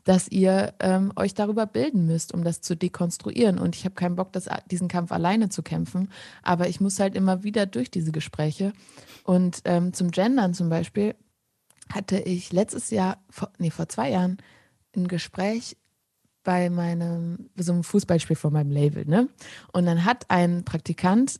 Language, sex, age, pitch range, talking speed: German, female, 20-39, 175-215 Hz, 175 wpm